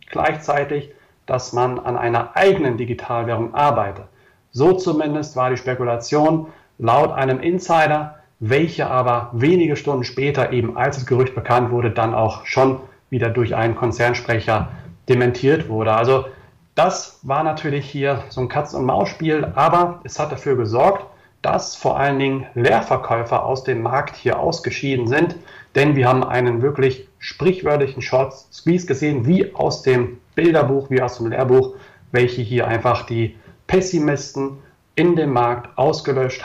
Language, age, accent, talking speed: German, 40-59, German, 140 wpm